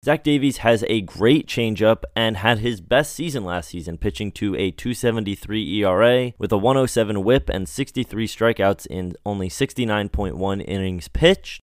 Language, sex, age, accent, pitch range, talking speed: English, male, 20-39, American, 100-125 Hz, 155 wpm